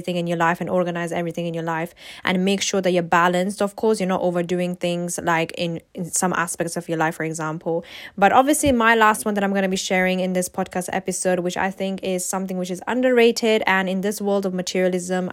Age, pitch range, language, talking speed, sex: 10-29, 180-200 Hz, English, 235 wpm, female